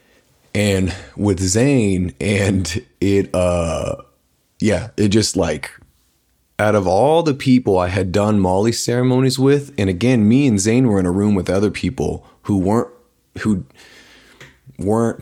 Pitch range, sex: 90-115 Hz, male